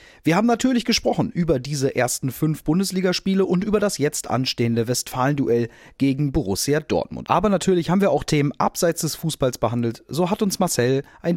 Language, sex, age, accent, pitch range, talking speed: German, male, 30-49, German, 125-180 Hz, 175 wpm